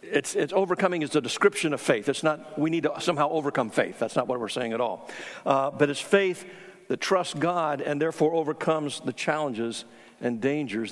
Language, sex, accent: English, male, American